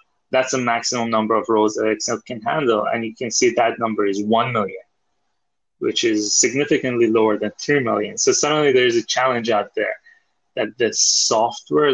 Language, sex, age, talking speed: English, male, 20-39, 180 wpm